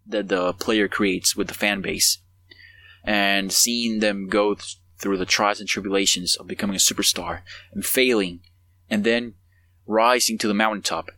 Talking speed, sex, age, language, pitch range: 160 wpm, male, 20-39, English, 90-115 Hz